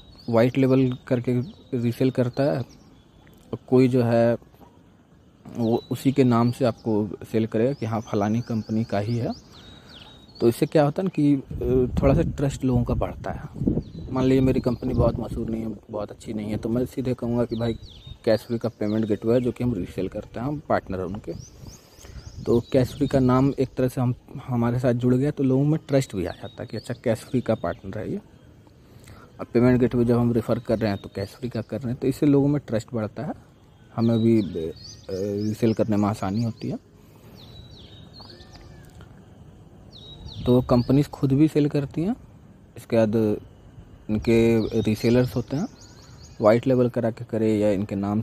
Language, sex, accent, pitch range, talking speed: Hindi, male, native, 110-130 Hz, 190 wpm